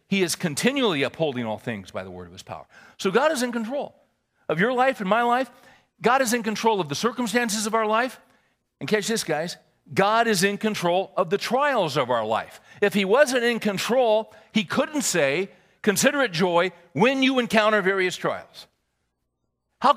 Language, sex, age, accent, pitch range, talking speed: English, male, 50-69, American, 150-230 Hz, 190 wpm